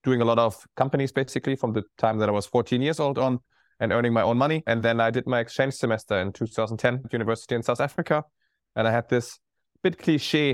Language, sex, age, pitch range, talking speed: English, male, 20-39, 110-130 Hz, 245 wpm